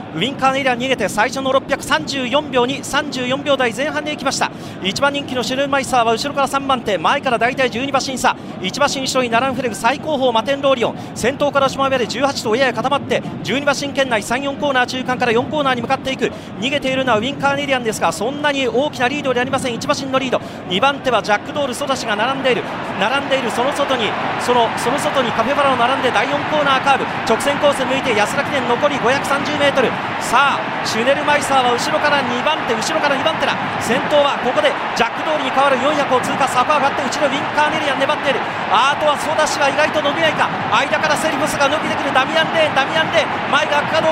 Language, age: Japanese, 40-59